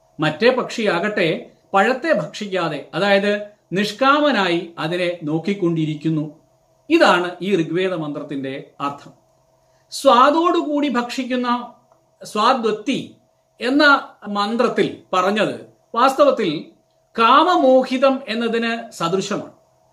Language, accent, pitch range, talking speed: Malayalam, native, 180-255 Hz, 70 wpm